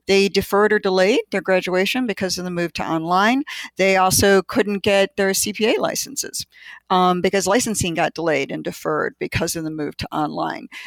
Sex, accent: female, American